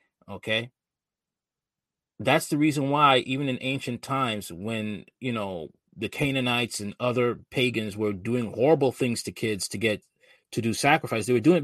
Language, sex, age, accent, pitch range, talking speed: English, male, 30-49, American, 115-145 Hz, 165 wpm